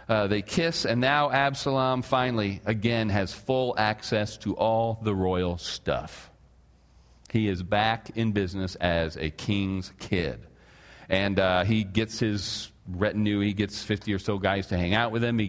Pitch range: 85-115 Hz